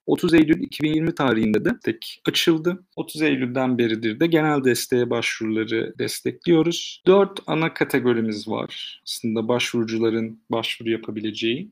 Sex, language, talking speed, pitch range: male, Turkish, 120 wpm, 120-145 Hz